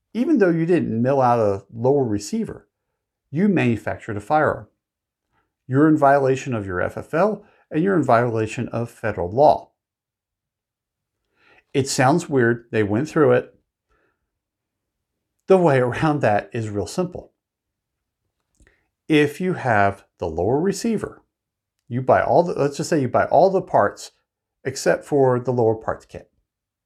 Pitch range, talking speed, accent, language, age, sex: 115-170 Hz, 145 wpm, American, English, 50-69, male